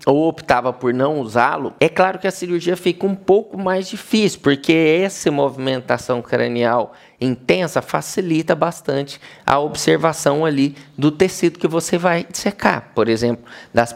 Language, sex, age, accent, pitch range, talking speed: Portuguese, male, 20-39, Brazilian, 145-200 Hz, 145 wpm